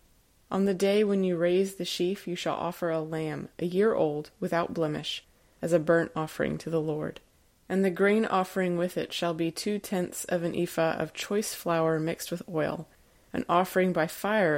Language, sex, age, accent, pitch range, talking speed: English, female, 20-39, American, 160-180 Hz, 195 wpm